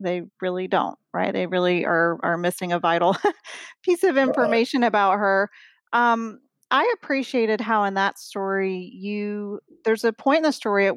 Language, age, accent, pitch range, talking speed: English, 40-59, American, 180-210 Hz, 170 wpm